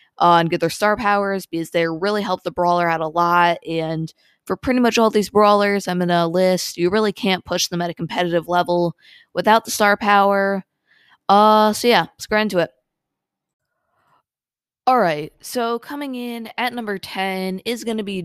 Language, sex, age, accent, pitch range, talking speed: English, female, 20-39, American, 170-205 Hz, 185 wpm